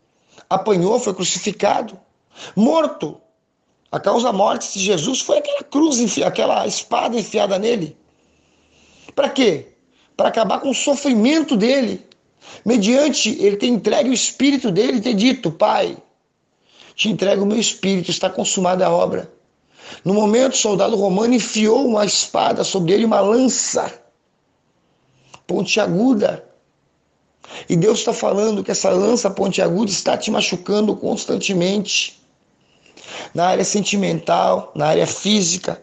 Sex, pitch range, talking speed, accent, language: male, 195-245 Hz, 130 wpm, Brazilian, Portuguese